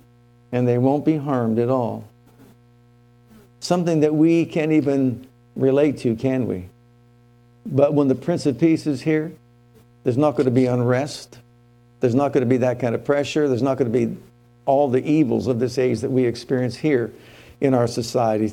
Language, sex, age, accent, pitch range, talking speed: English, male, 60-79, American, 120-155 Hz, 185 wpm